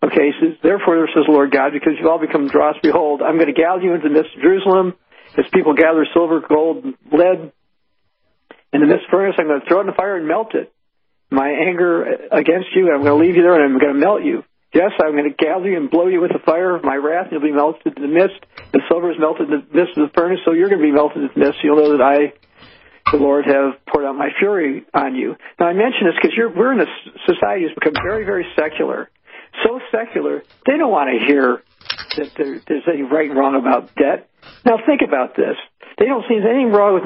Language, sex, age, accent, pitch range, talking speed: English, male, 50-69, American, 145-190 Hz, 255 wpm